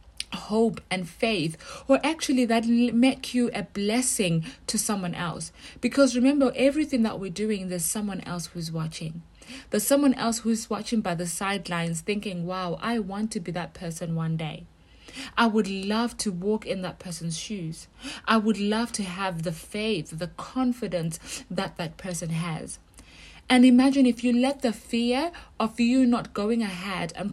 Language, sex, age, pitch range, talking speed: English, female, 30-49, 180-235 Hz, 170 wpm